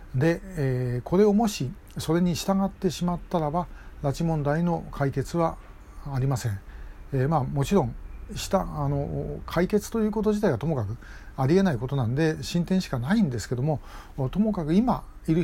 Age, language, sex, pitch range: 60-79, Japanese, male, 130-185 Hz